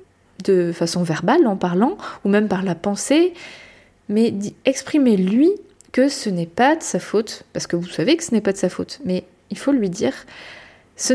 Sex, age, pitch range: female, 20-39, 195-245 Hz